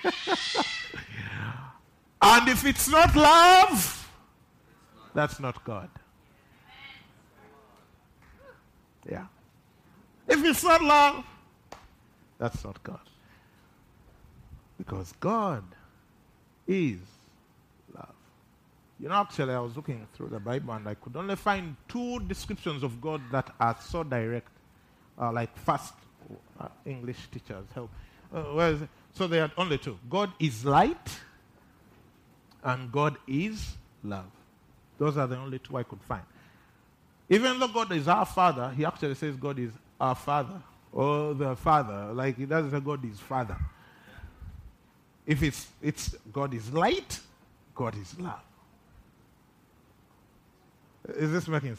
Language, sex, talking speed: English, male, 120 wpm